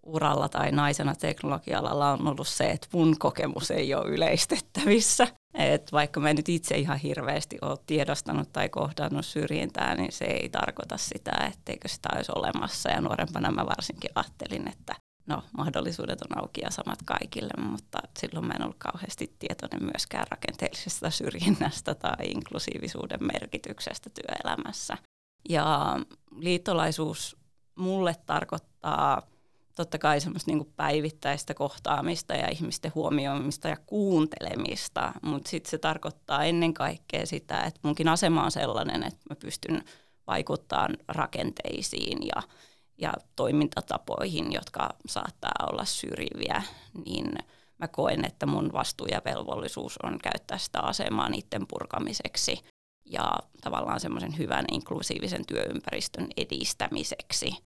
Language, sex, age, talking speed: Finnish, female, 30-49, 125 wpm